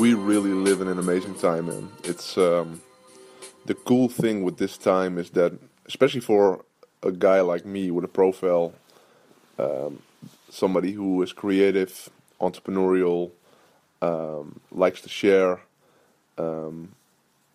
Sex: male